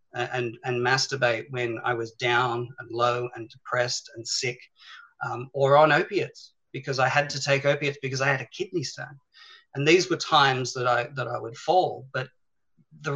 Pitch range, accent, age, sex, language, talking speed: 125-155 Hz, Australian, 40-59, male, English, 185 wpm